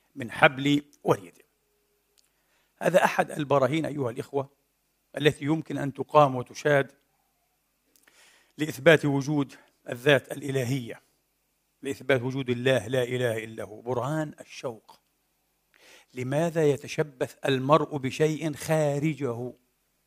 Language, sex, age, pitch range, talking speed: Arabic, male, 50-69, 140-180 Hz, 95 wpm